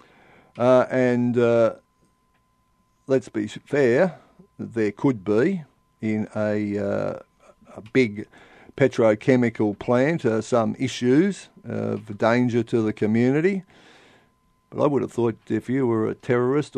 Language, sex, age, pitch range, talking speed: English, male, 50-69, 110-135 Hz, 125 wpm